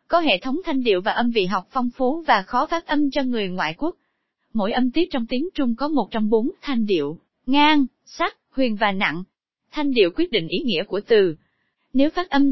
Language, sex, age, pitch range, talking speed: Vietnamese, female, 20-39, 220-290 Hz, 225 wpm